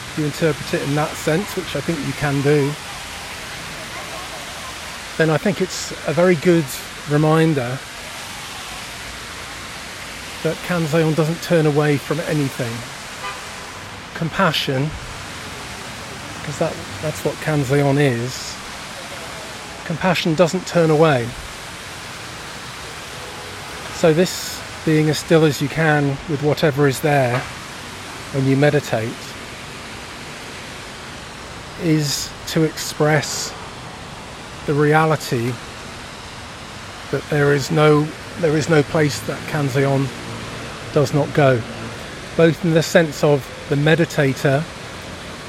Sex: male